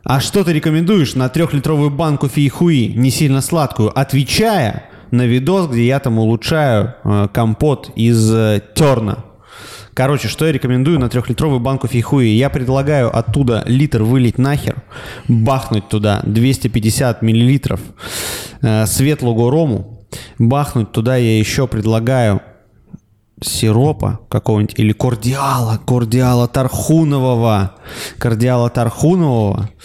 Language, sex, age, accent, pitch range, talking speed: Russian, male, 20-39, native, 110-135 Hz, 110 wpm